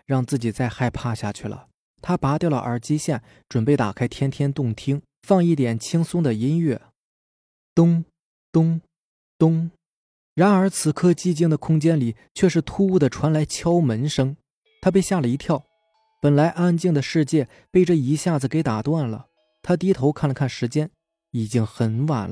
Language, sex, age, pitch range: Chinese, male, 20-39, 125-175 Hz